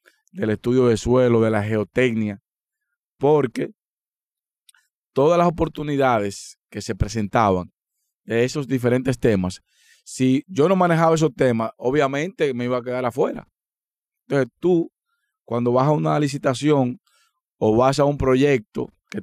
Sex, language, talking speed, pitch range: male, Spanish, 135 wpm, 115-150 Hz